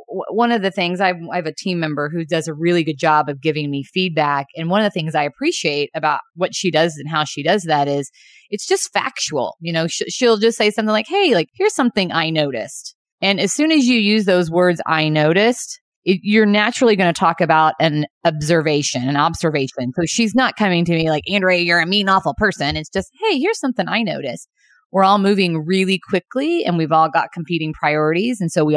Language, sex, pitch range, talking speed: English, female, 160-215 Hz, 220 wpm